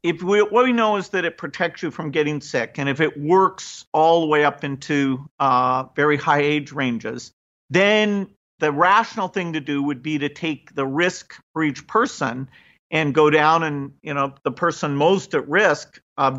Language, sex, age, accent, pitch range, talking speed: English, male, 50-69, American, 140-175 Hz, 200 wpm